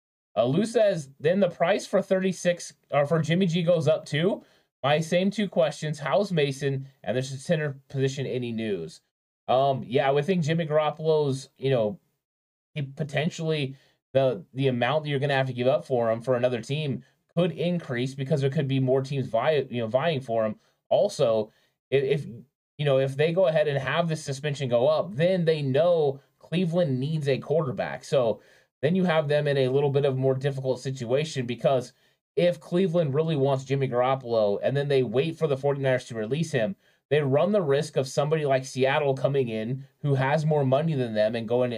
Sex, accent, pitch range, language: male, American, 130-155 Hz, English